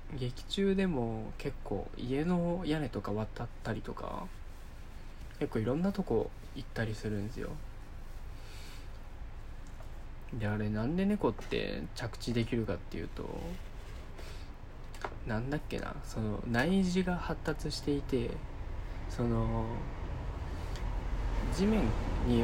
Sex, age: male, 20-39